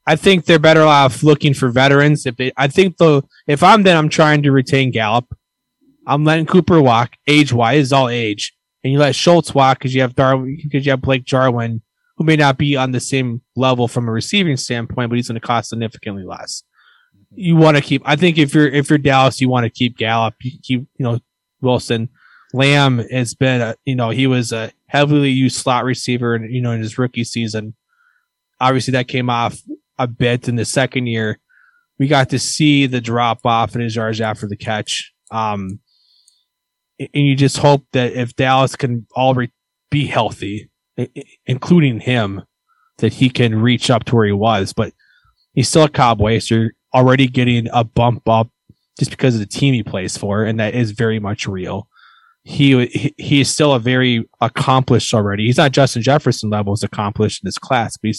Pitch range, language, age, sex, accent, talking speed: 115-140 Hz, English, 20-39, male, American, 200 wpm